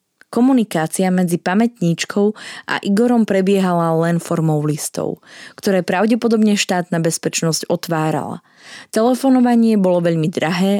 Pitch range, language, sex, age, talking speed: 175-225 Hz, Slovak, female, 20-39, 100 wpm